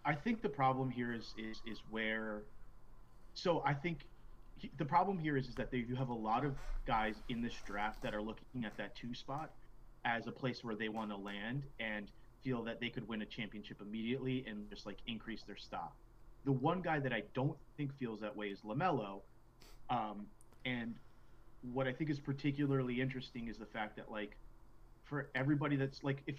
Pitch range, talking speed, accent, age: 110-140 Hz, 200 wpm, American, 30-49